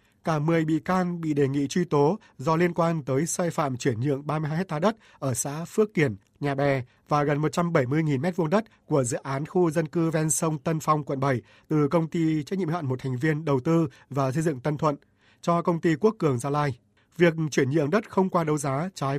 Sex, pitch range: male, 140-170 Hz